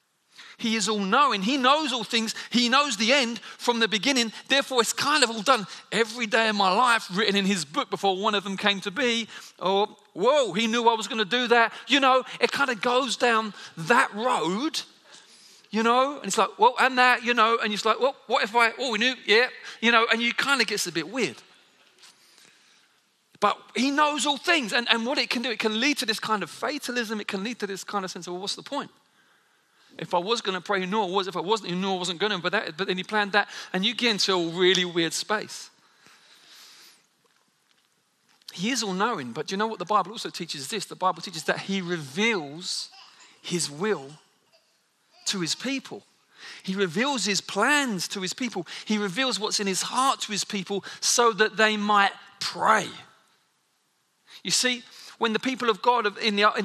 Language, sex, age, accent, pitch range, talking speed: English, male, 40-59, British, 200-245 Hz, 220 wpm